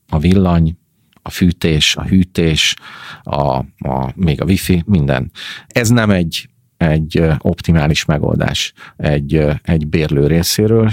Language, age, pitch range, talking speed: Hungarian, 40-59, 80-95 Hz, 110 wpm